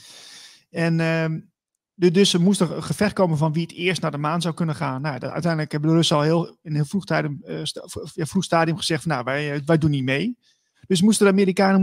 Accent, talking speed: Dutch, 245 wpm